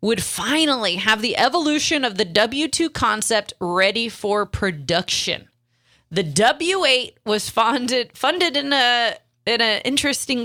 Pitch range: 165-270 Hz